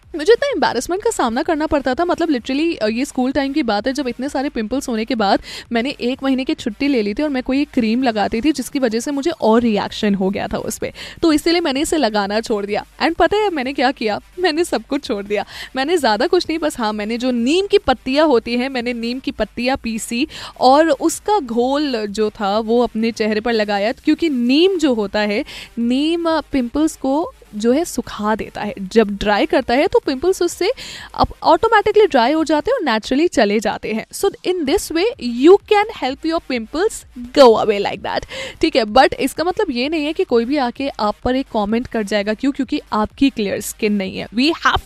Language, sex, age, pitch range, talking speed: Hindi, female, 10-29, 225-315 Hz, 220 wpm